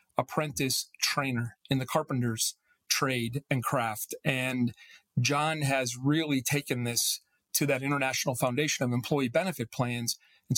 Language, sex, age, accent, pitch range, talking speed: English, male, 40-59, American, 125-160 Hz, 130 wpm